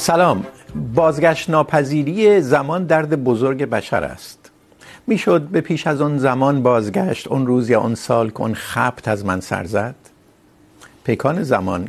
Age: 50-69